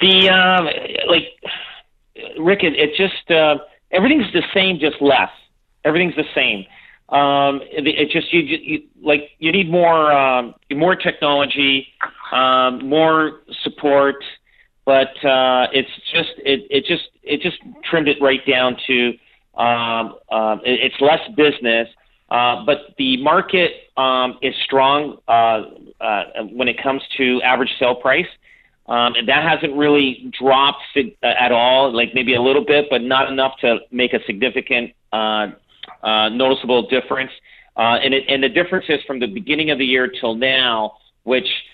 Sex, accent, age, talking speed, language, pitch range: male, American, 40-59, 155 wpm, English, 125-150 Hz